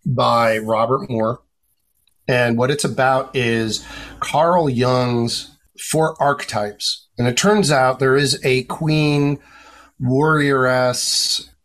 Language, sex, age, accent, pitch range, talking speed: English, male, 40-59, American, 120-145 Hz, 110 wpm